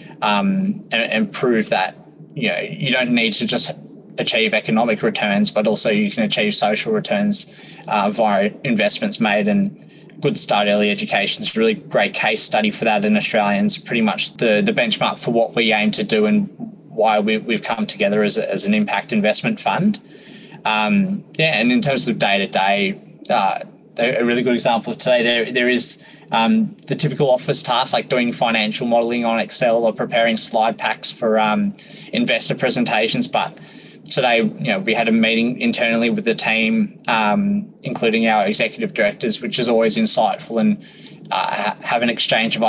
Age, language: 20-39, English